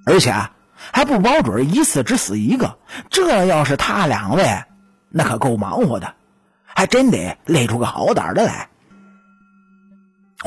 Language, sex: Chinese, male